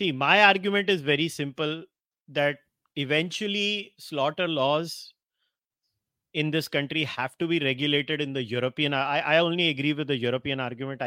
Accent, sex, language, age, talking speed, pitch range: Indian, male, English, 30-49, 145 wpm, 145-180 Hz